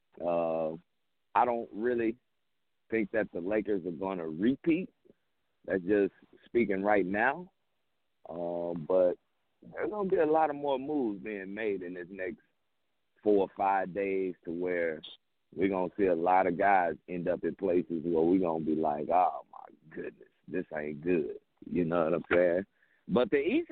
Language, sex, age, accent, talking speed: English, male, 50-69, American, 180 wpm